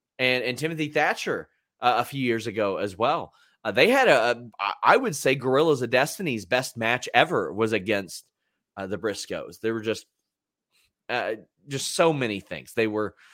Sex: male